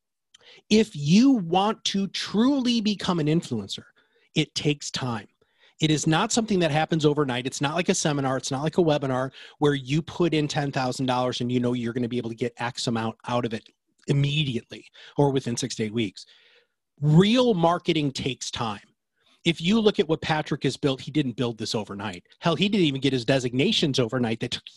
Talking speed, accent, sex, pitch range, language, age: 200 wpm, American, male, 125-185 Hz, English, 30-49